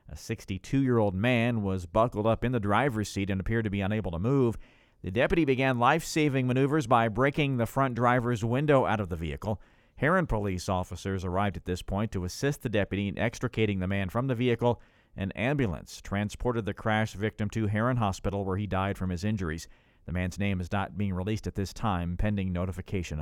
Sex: male